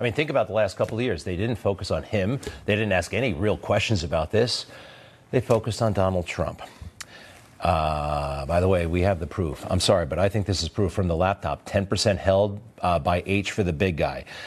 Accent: American